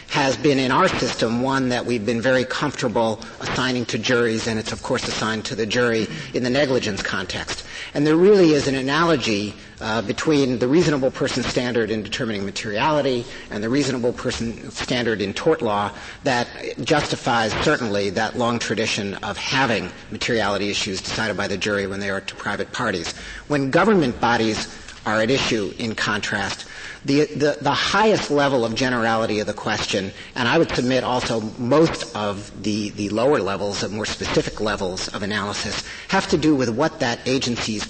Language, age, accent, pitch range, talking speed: English, 50-69, American, 110-140 Hz, 175 wpm